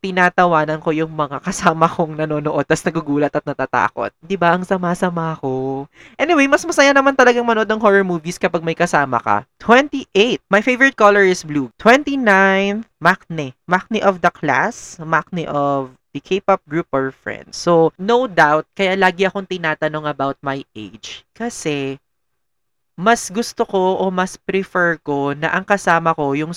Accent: Filipino